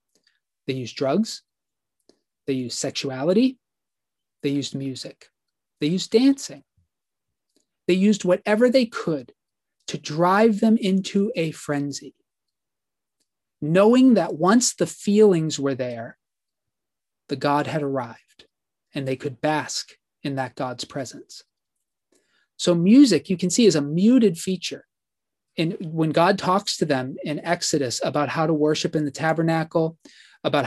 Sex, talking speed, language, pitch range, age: male, 130 wpm, English, 145-195 Hz, 30-49